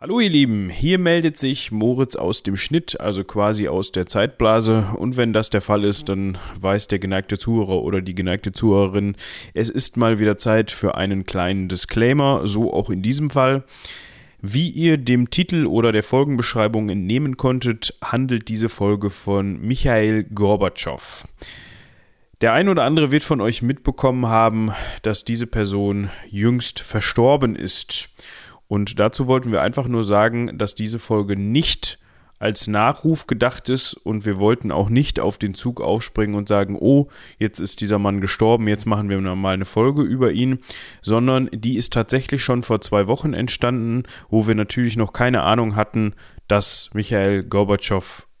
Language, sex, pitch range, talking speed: German, male, 100-125 Hz, 165 wpm